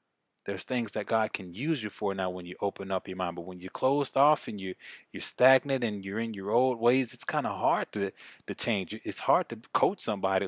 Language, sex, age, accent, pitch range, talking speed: English, male, 20-39, American, 105-120 Hz, 240 wpm